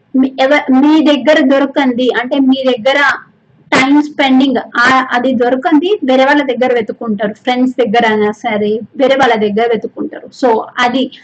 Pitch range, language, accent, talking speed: 255-305 Hz, Telugu, native, 125 wpm